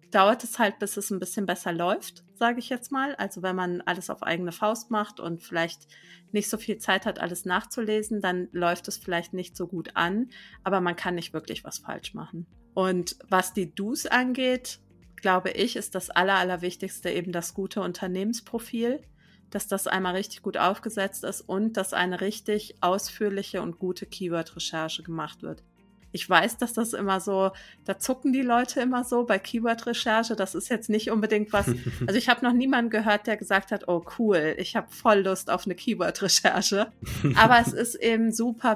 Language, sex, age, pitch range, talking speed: German, female, 30-49, 180-225 Hz, 185 wpm